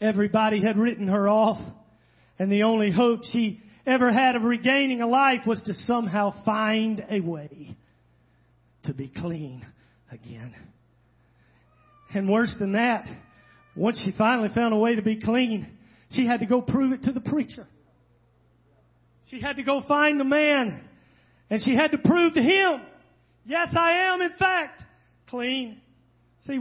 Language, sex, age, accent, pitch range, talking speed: English, male, 40-59, American, 190-265 Hz, 155 wpm